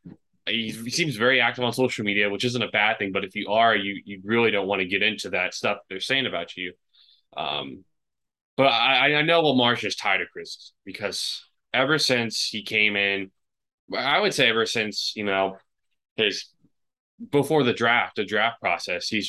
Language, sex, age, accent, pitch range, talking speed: English, male, 20-39, American, 95-115 Hz, 195 wpm